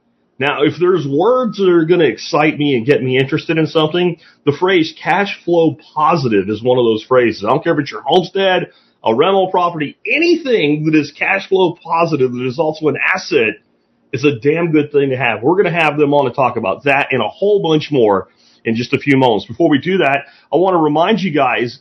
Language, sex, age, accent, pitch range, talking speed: English, male, 30-49, American, 130-185 Hz, 230 wpm